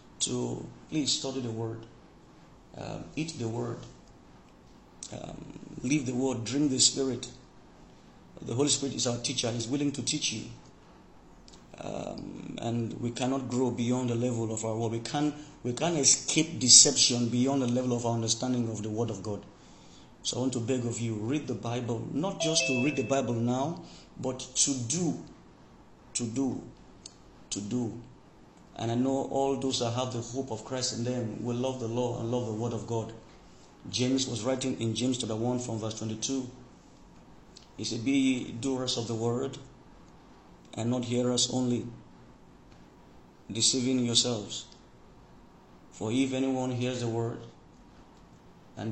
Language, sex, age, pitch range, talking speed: English, male, 50-69, 115-130 Hz, 160 wpm